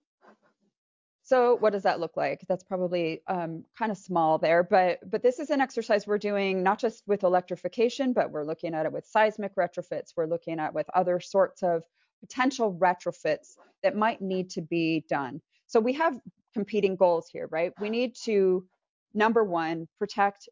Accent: American